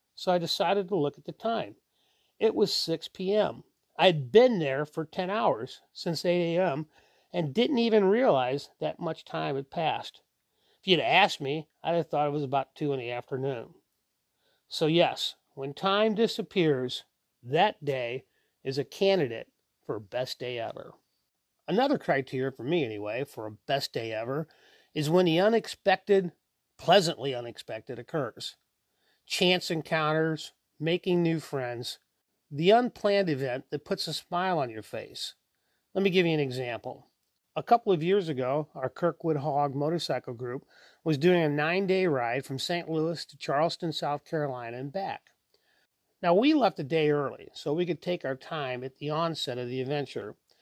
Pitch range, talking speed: 135-185 Hz, 165 wpm